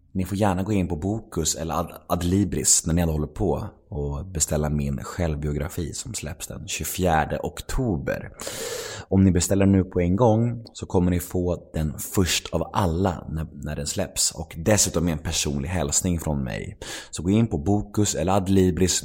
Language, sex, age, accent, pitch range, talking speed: Swedish, male, 30-49, native, 80-100 Hz, 170 wpm